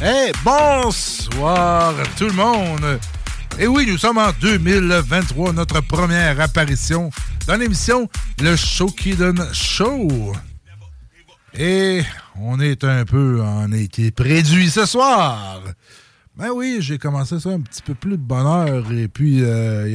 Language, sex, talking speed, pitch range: English, male, 135 wpm, 115-170 Hz